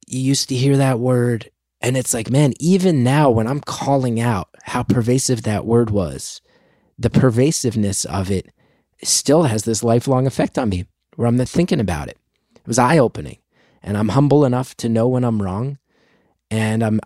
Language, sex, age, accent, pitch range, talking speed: English, male, 30-49, American, 110-140 Hz, 180 wpm